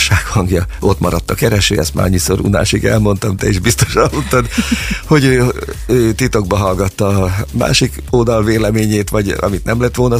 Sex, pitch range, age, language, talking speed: male, 90-110 Hz, 50-69, Hungarian, 165 wpm